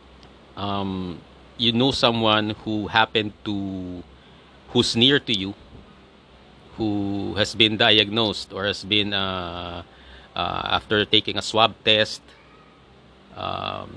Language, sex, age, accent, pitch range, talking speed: Filipino, male, 40-59, native, 90-105 Hz, 110 wpm